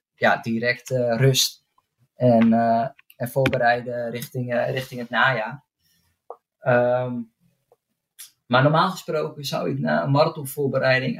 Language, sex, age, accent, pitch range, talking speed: Dutch, male, 20-39, Dutch, 120-140 Hz, 120 wpm